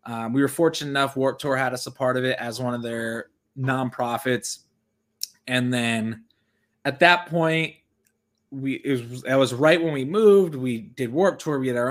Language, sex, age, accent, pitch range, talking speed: English, male, 20-39, American, 115-135 Hz, 200 wpm